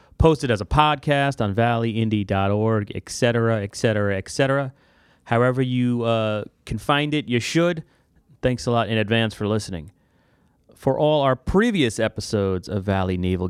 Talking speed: 145 wpm